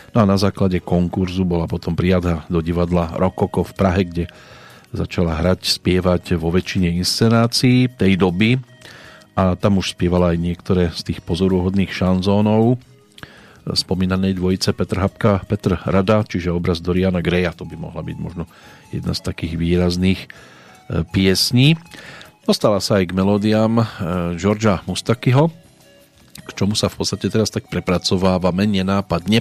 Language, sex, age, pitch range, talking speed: Slovak, male, 40-59, 90-105 Hz, 140 wpm